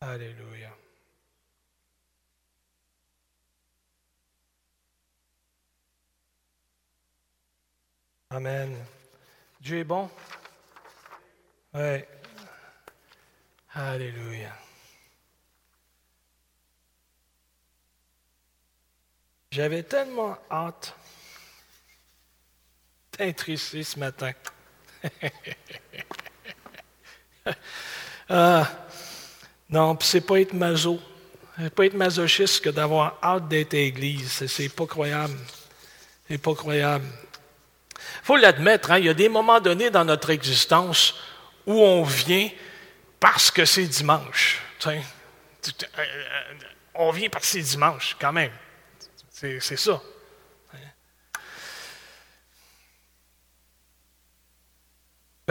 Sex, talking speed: male, 80 wpm